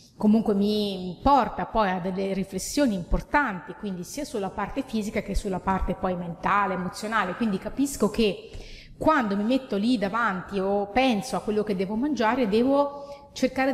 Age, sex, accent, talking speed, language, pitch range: 30-49, female, native, 155 wpm, Italian, 200-245 Hz